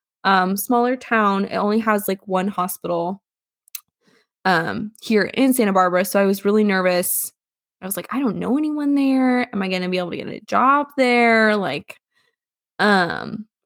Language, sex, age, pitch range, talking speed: English, female, 20-39, 190-235 Hz, 175 wpm